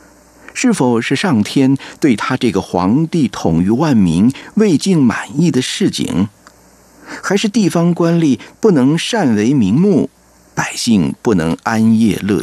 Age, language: 50-69, Chinese